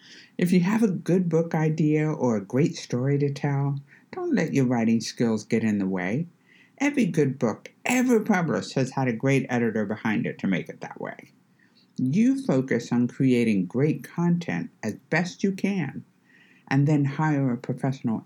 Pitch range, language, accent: 125-170 Hz, English, American